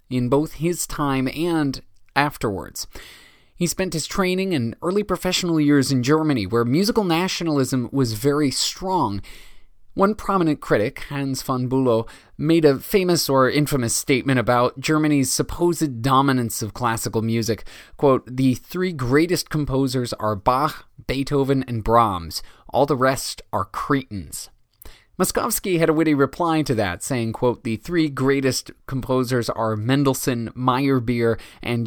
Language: English